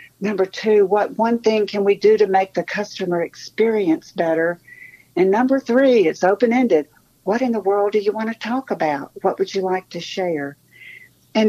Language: English